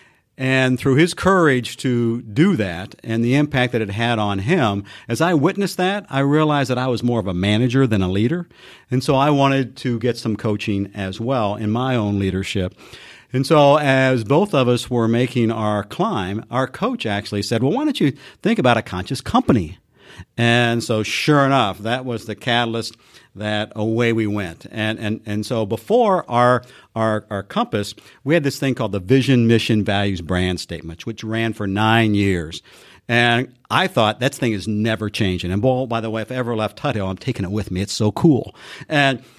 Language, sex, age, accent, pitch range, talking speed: English, male, 50-69, American, 105-135 Hz, 200 wpm